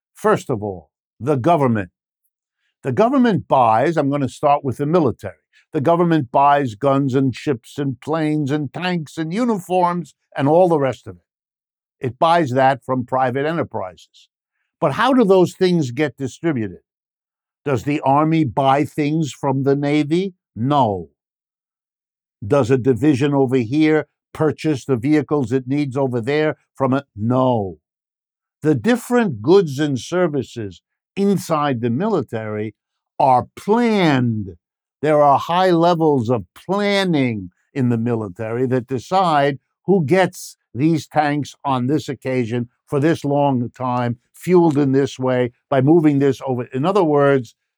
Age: 60-79